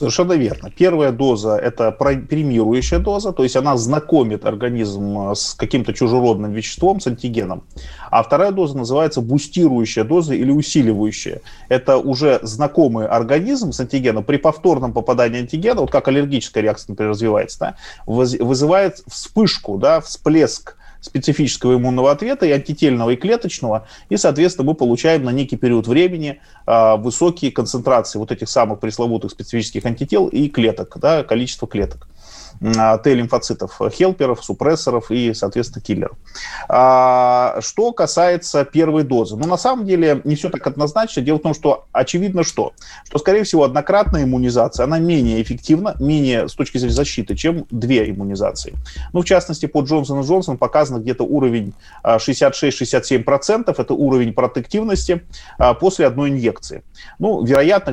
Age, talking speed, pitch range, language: 30-49, 140 wpm, 115-155 Hz, Russian